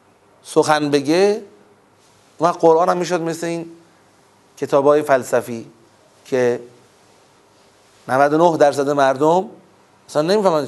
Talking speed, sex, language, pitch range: 95 wpm, male, Persian, 130-165 Hz